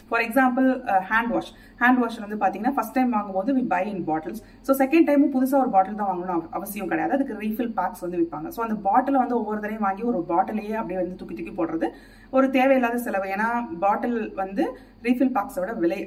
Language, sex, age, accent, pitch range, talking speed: Tamil, female, 30-49, native, 190-260 Hz, 205 wpm